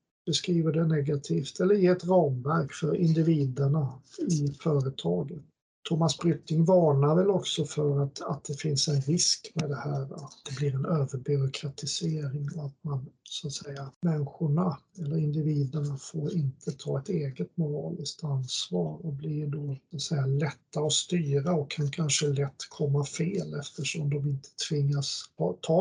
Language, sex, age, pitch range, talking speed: Swedish, male, 50-69, 145-165 Hz, 155 wpm